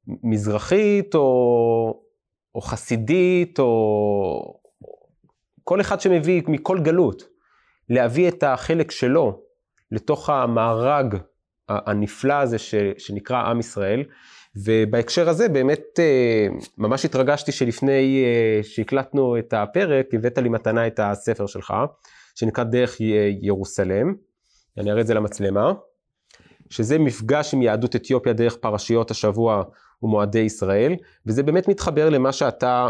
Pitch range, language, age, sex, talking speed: 105-145 Hz, Hebrew, 30-49, male, 105 wpm